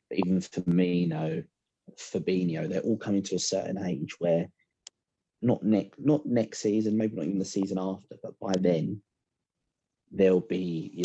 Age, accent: 30-49, British